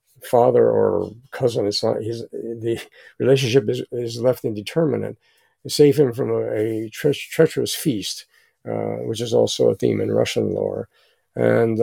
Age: 50-69